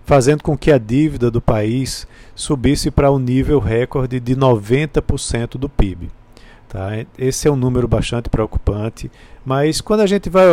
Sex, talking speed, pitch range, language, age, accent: male, 165 wpm, 115-150 Hz, Portuguese, 50-69, Brazilian